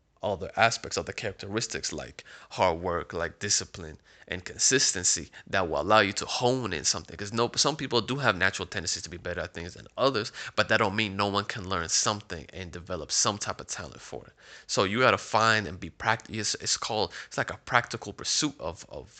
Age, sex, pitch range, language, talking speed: 20-39, male, 95-110 Hz, English, 220 wpm